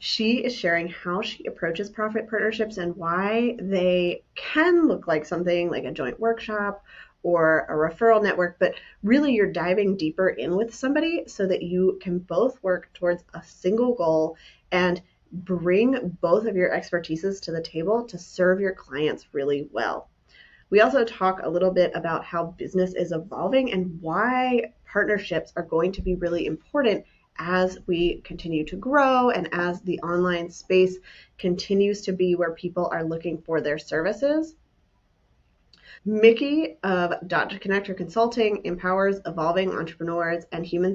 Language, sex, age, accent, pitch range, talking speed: English, female, 30-49, American, 170-210 Hz, 155 wpm